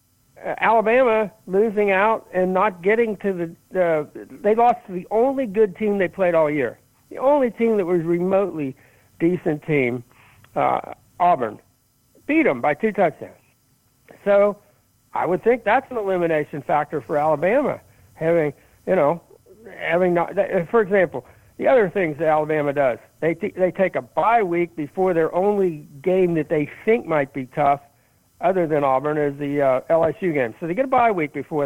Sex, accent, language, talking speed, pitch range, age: male, American, English, 165 wpm, 145-200 Hz, 60-79